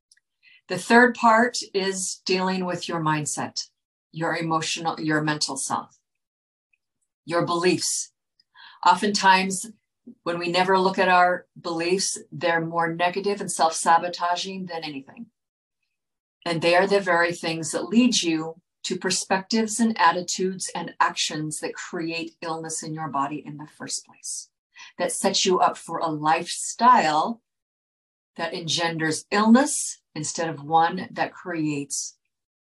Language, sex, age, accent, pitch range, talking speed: English, female, 50-69, American, 160-200 Hz, 130 wpm